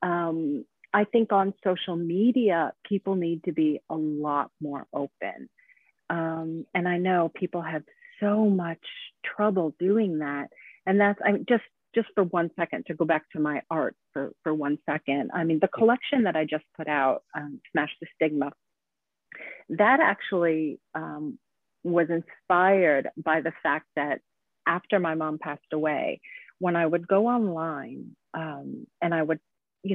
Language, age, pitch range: English, 40-59, 160-215 Hz